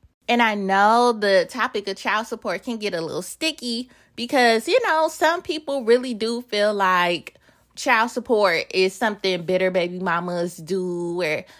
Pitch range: 230-310 Hz